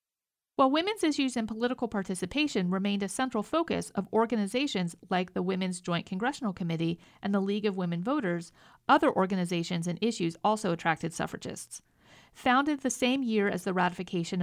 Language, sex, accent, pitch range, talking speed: English, female, American, 180-250 Hz, 160 wpm